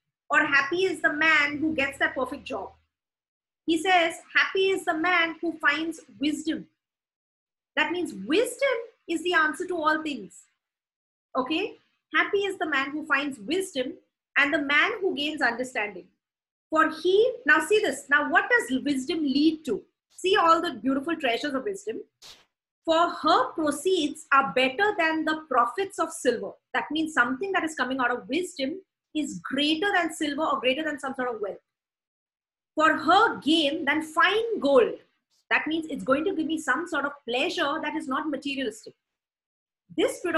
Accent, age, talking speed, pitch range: Indian, 30-49, 170 wpm, 280-350 Hz